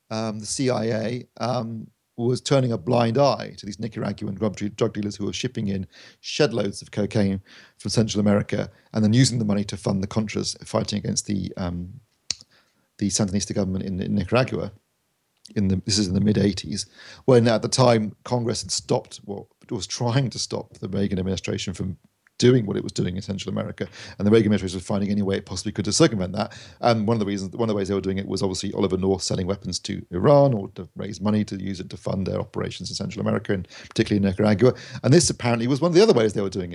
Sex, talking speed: male, 225 wpm